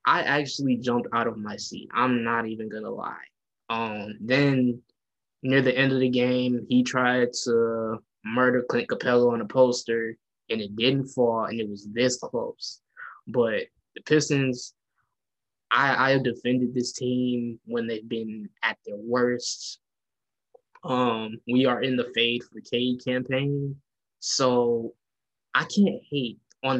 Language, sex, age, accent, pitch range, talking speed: English, male, 10-29, American, 115-135 Hz, 150 wpm